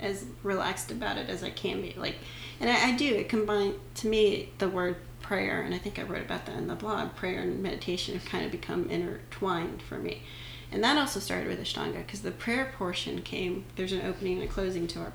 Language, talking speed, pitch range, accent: English, 235 wpm, 120-195 Hz, American